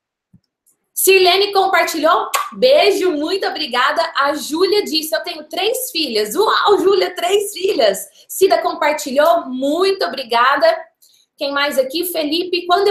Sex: female